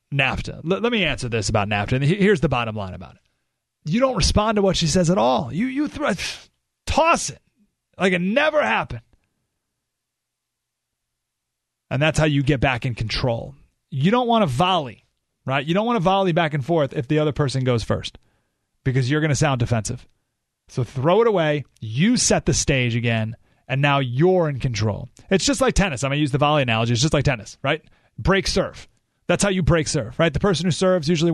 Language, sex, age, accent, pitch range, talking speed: English, male, 30-49, American, 130-185 Hz, 210 wpm